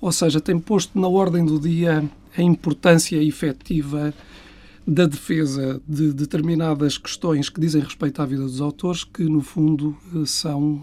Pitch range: 135-165 Hz